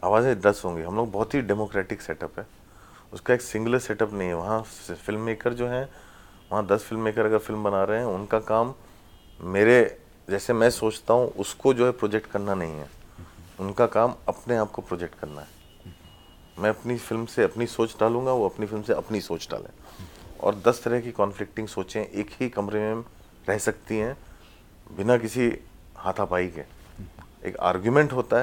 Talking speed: 185 wpm